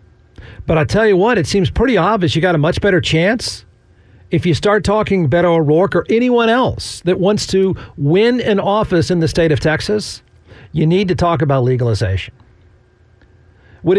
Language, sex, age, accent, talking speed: English, male, 50-69, American, 180 wpm